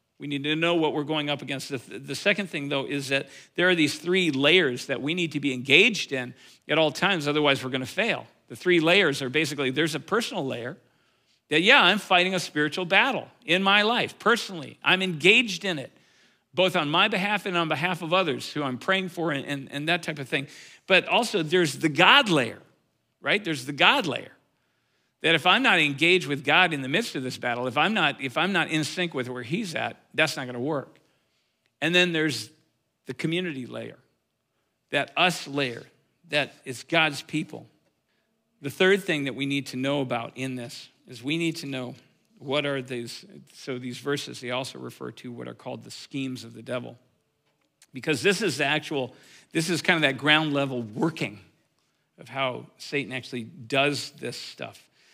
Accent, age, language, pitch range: American, 50-69, English, 135-170 Hz